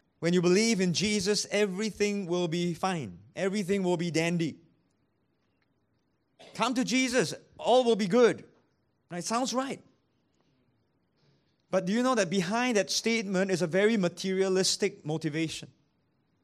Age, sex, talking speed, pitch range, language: 30-49, male, 130 wpm, 160-210 Hz, English